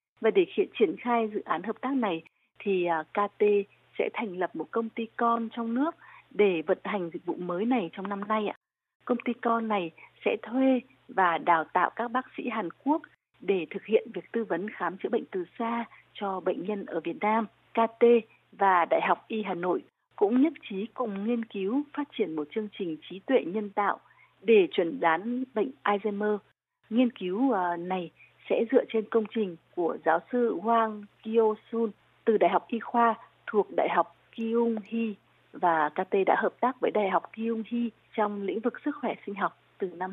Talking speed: 195 wpm